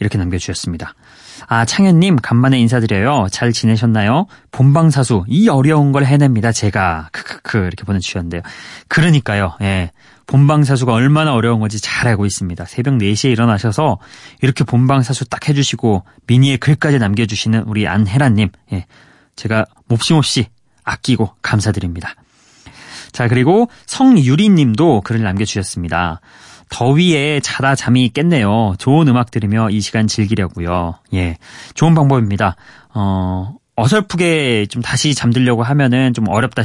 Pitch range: 105-145 Hz